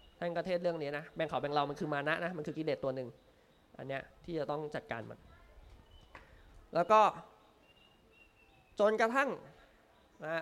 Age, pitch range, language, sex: 20-39, 135-180 Hz, Thai, male